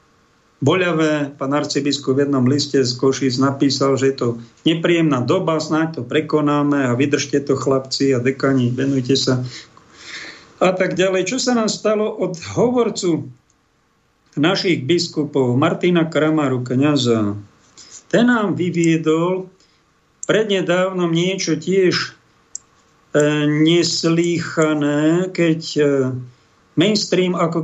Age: 50-69